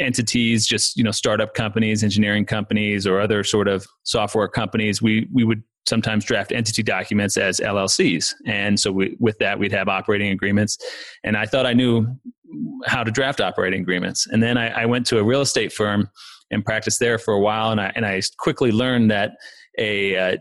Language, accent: English, American